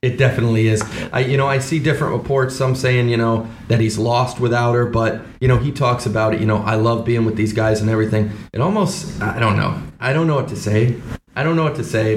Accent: American